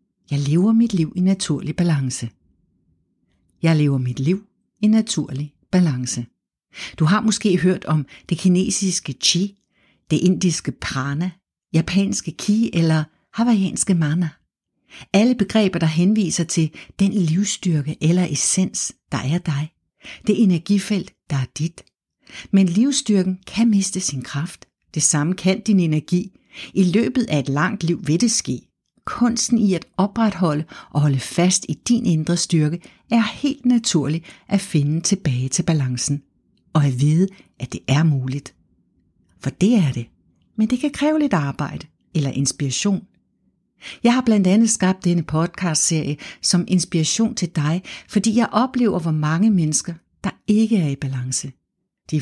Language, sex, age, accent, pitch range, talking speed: Danish, female, 60-79, native, 150-200 Hz, 145 wpm